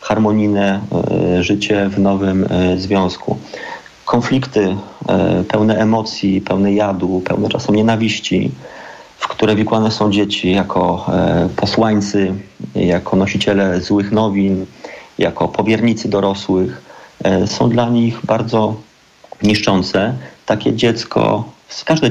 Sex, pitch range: male, 95-110 Hz